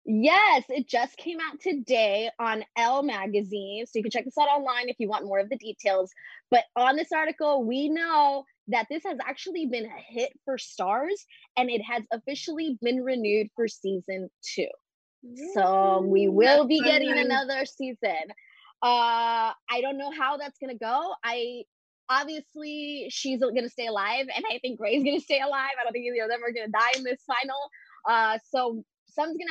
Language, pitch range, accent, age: English, 230-305 Hz, American, 20-39